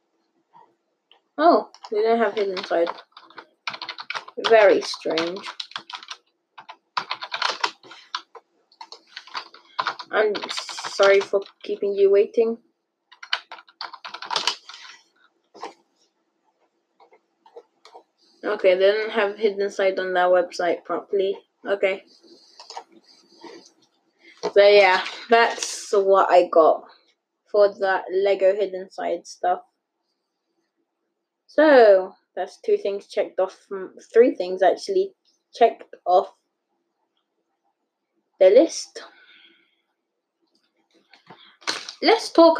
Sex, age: female, 20-39